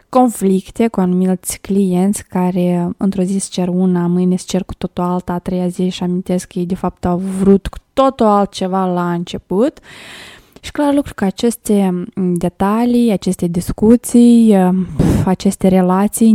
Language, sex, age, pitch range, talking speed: Romanian, female, 20-39, 185-215 Hz, 155 wpm